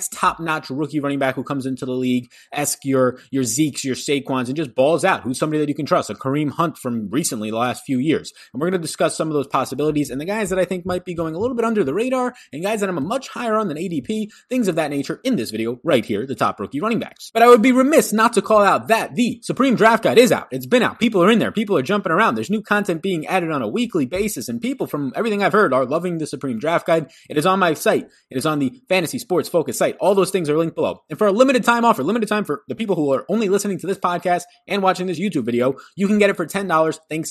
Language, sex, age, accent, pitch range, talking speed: English, male, 20-39, American, 140-205 Hz, 290 wpm